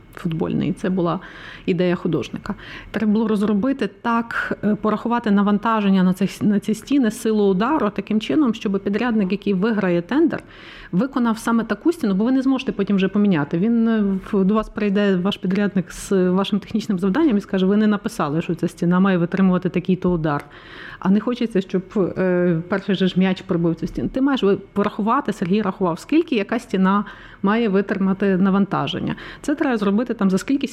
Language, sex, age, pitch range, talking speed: Ukrainian, female, 30-49, 185-220 Hz, 165 wpm